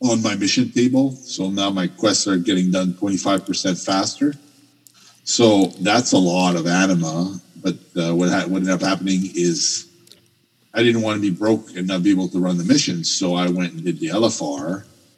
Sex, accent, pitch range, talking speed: male, American, 90-125 Hz, 200 wpm